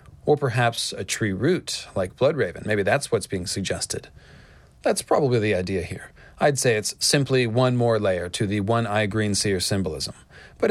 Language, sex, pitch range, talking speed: English, male, 105-130 Hz, 185 wpm